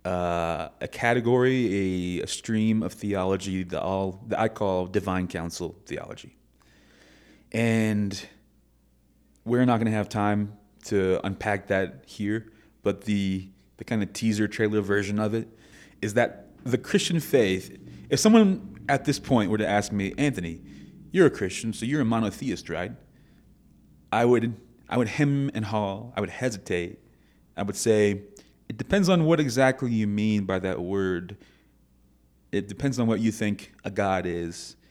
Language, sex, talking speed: English, male, 155 wpm